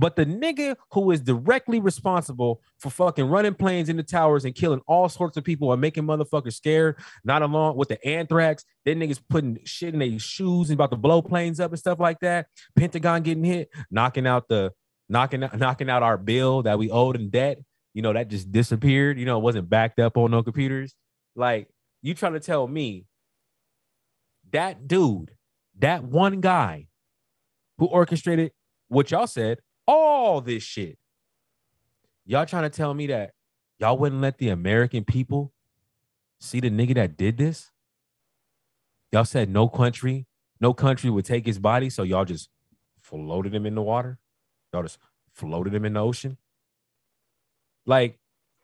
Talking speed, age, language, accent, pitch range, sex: 170 wpm, 20-39, English, American, 115-155 Hz, male